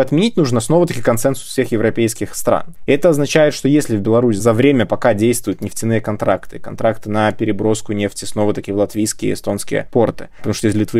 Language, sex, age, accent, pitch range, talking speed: Russian, male, 20-39, native, 105-135 Hz, 190 wpm